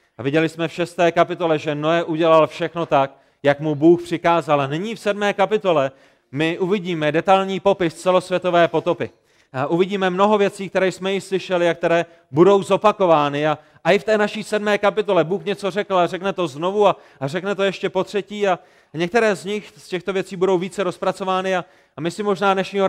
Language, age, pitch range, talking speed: Czech, 30-49, 155-190 Hz, 190 wpm